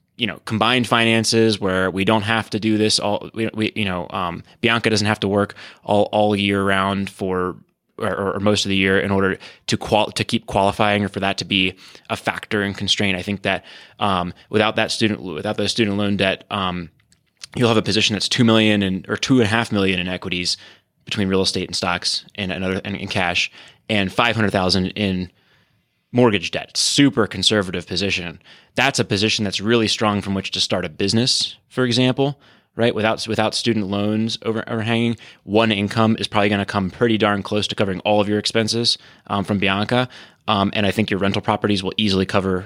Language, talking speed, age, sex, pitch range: English, 205 wpm, 20-39, male, 95-110 Hz